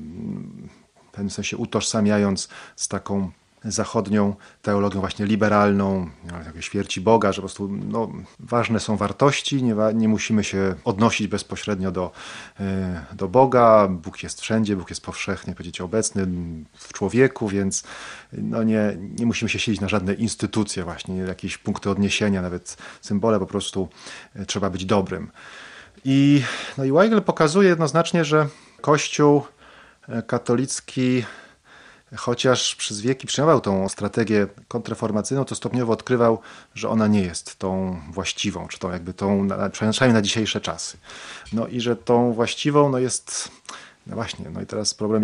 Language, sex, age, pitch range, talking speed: Polish, male, 30-49, 100-120 Hz, 145 wpm